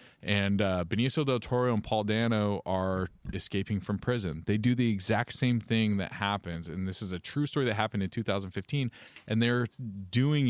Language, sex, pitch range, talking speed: English, male, 100-120 Hz, 190 wpm